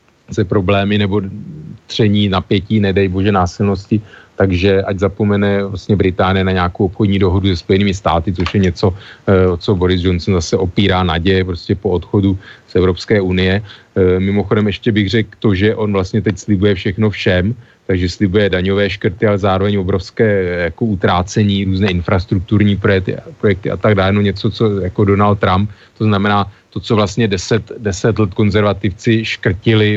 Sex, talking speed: male, 150 wpm